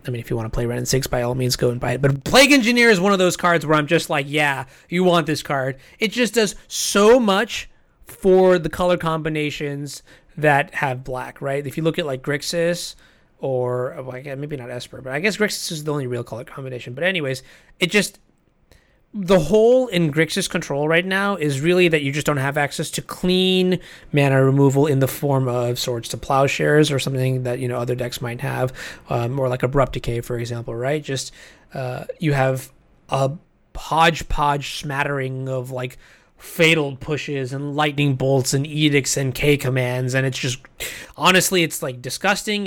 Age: 30-49